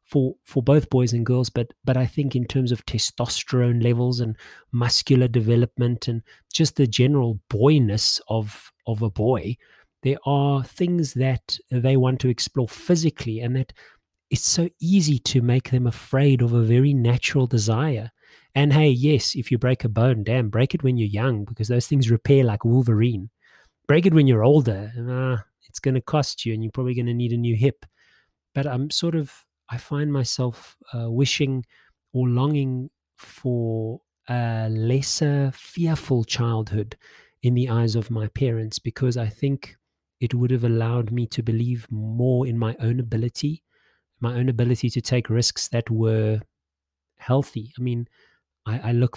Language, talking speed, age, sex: English, 175 wpm, 30-49, male